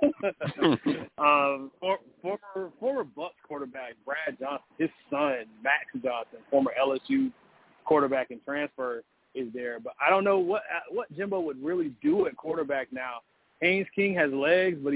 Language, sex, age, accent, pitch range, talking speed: English, male, 30-49, American, 130-165 Hz, 150 wpm